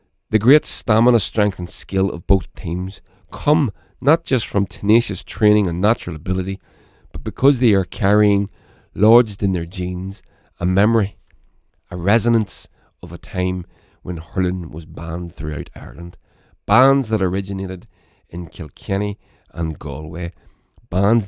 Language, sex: English, male